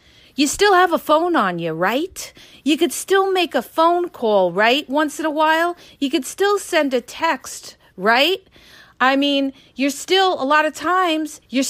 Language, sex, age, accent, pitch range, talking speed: English, female, 40-59, American, 215-290 Hz, 185 wpm